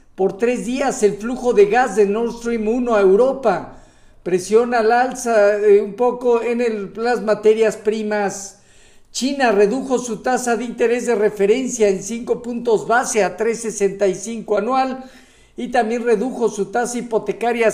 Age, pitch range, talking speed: 50-69, 205-240 Hz, 150 wpm